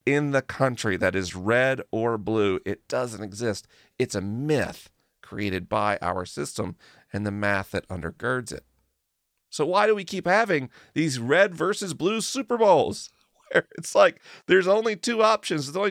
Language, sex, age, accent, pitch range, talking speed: English, male, 40-59, American, 105-165 Hz, 165 wpm